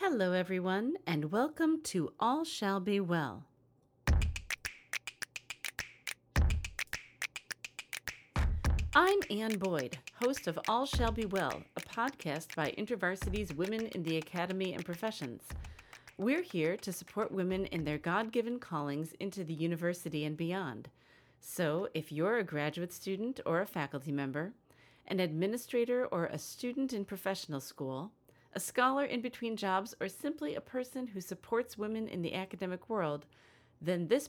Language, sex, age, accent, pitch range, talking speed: English, female, 40-59, American, 155-220 Hz, 135 wpm